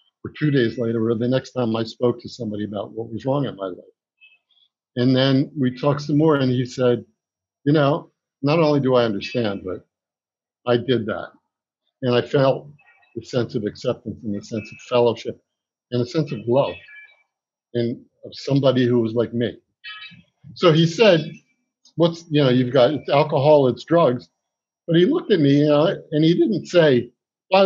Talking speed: 190 wpm